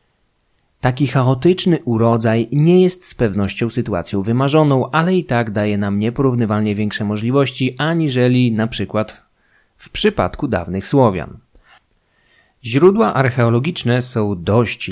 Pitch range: 105-135 Hz